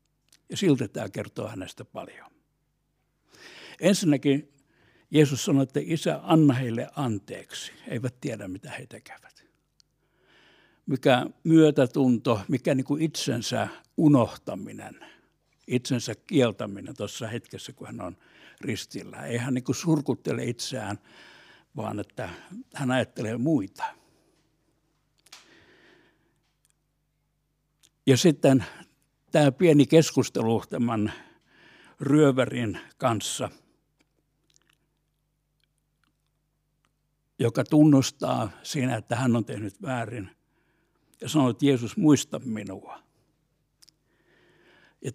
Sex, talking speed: male, 85 wpm